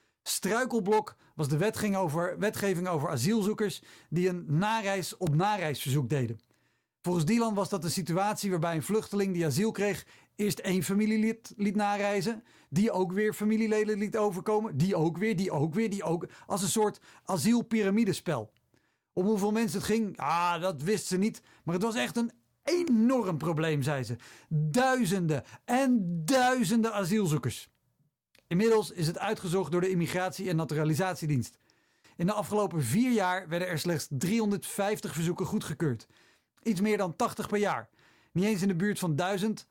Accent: Dutch